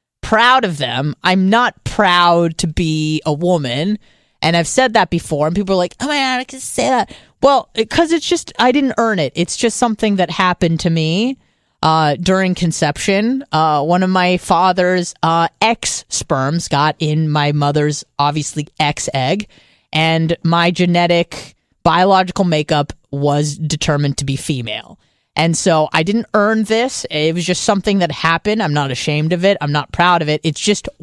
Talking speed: 180 wpm